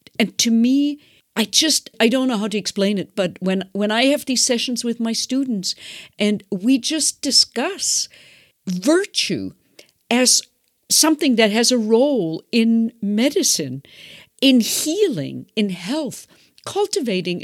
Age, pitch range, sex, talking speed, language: 50-69, 185-260 Hz, female, 140 wpm, English